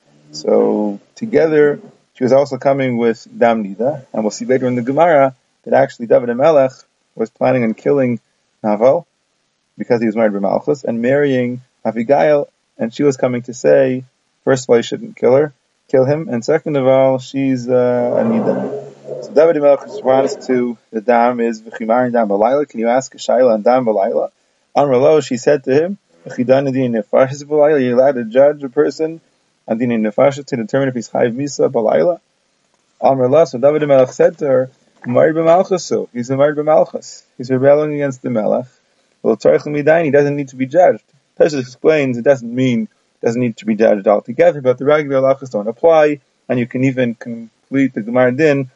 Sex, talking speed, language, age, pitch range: male, 180 wpm, English, 30-49, 120-145 Hz